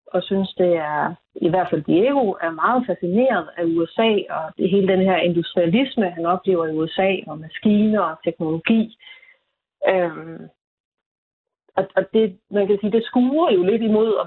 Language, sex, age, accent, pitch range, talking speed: Danish, female, 30-49, native, 170-200 Hz, 165 wpm